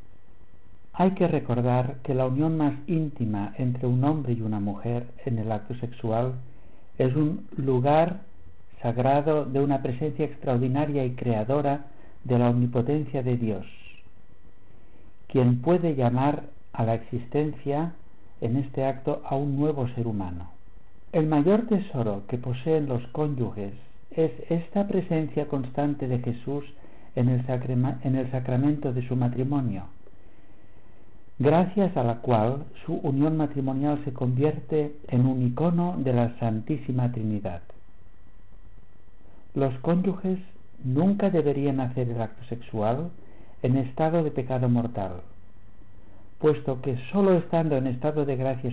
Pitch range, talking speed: 110-145 Hz, 130 wpm